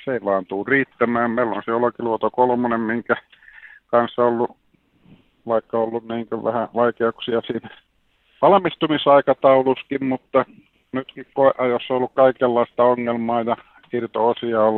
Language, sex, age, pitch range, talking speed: Finnish, male, 50-69, 100-120 Hz, 120 wpm